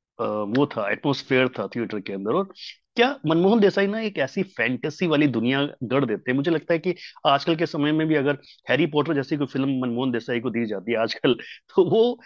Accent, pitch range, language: native, 115-175 Hz, Hindi